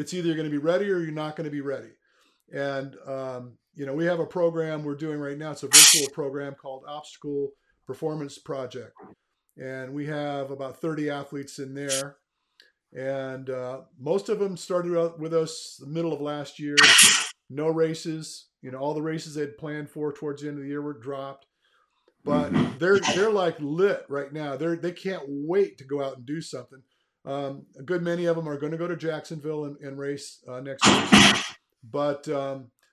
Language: English